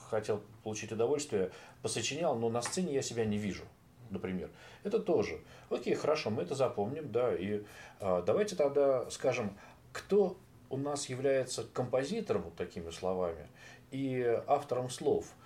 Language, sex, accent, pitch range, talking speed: Russian, male, native, 100-140 Hz, 130 wpm